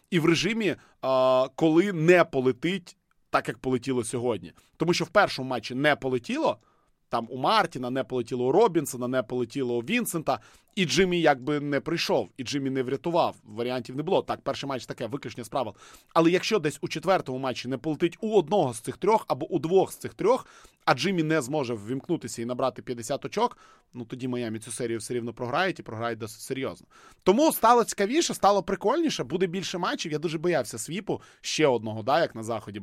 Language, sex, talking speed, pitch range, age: Ukrainian, male, 190 wpm, 120-160 Hz, 20-39